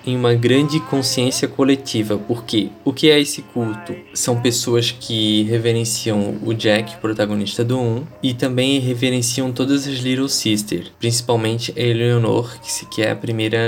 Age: 20-39